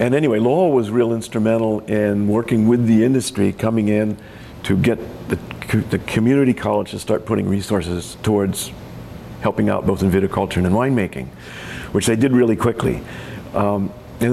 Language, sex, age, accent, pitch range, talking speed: English, male, 50-69, American, 95-115 Hz, 160 wpm